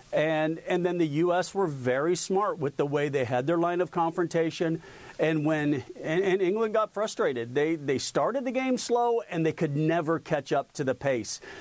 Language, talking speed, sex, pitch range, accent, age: English, 200 wpm, male, 135-170 Hz, American, 50-69